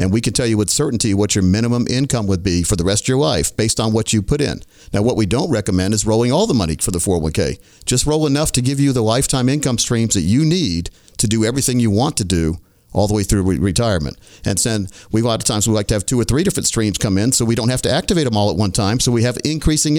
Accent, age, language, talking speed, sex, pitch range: American, 50-69, English, 290 wpm, male, 105-130 Hz